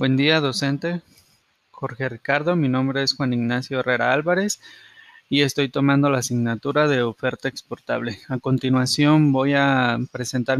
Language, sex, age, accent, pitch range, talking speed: Spanish, male, 20-39, Mexican, 130-155 Hz, 140 wpm